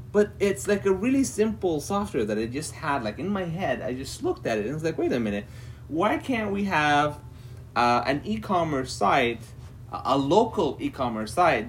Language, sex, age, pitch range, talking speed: English, male, 30-49, 115-160 Hz, 195 wpm